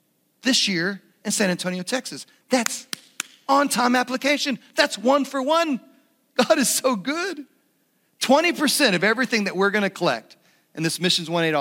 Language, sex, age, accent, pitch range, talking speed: English, male, 40-59, American, 145-195 Hz, 145 wpm